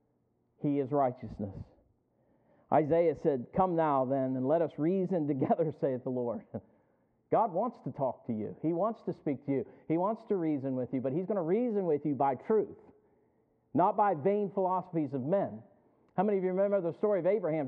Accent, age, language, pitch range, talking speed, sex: American, 50-69, English, 140-195 Hz, 195 wpm, male